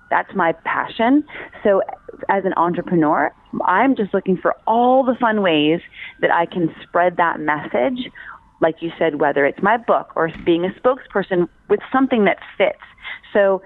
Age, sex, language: 30-49, female, English